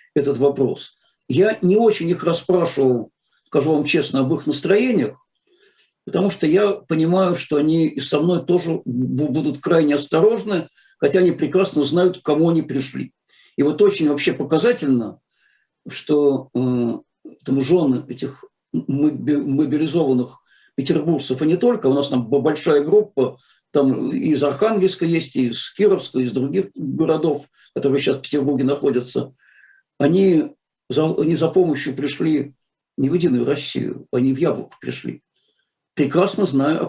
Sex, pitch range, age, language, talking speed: male, 140-185 Hz, 50-69, Russian, 140 wpm